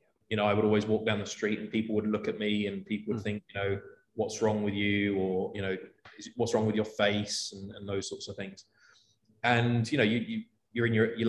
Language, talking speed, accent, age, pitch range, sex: English, 255 wpm, British, 20-39, 105-115 Hz, male